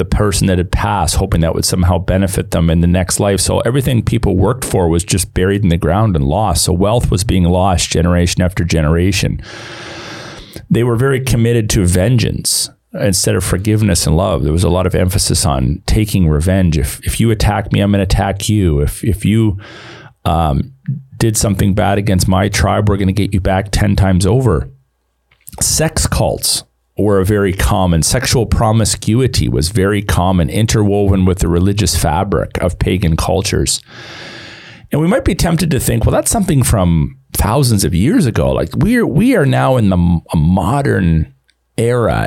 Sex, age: male, 40-59